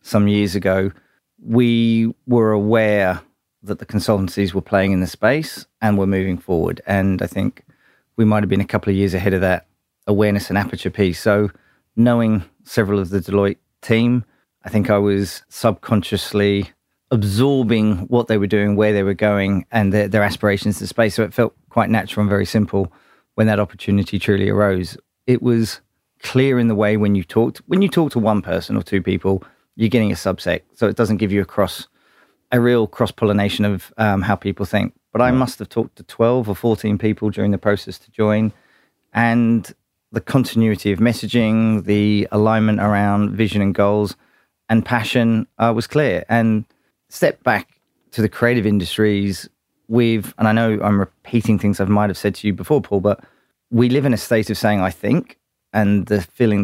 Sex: male